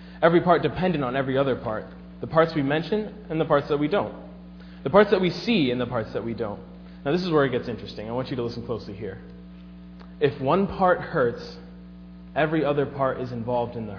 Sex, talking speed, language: male, 225 wpm, English